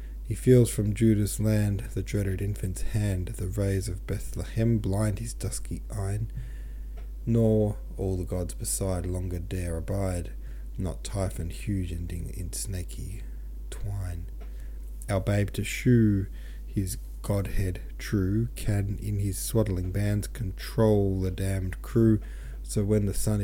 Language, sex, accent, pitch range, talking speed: English, male, Australian, 85-105 Hz, 135 wpm